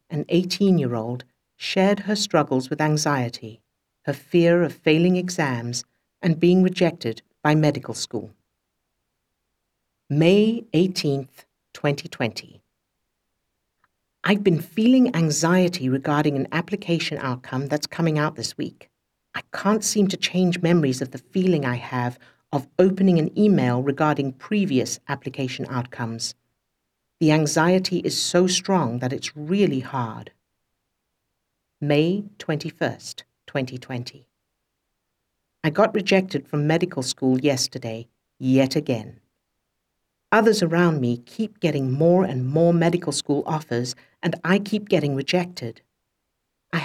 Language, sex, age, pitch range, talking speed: English, female, 60-79, 130-180 Hz, 120 wpm